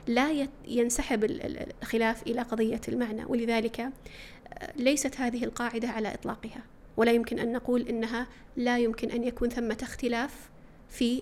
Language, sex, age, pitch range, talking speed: Arabic, female, 30-49, 230-250 Hz, 130 wpm